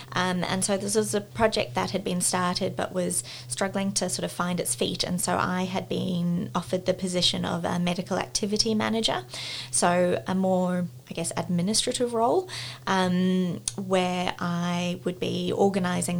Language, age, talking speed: English, 20-39, 170 wpm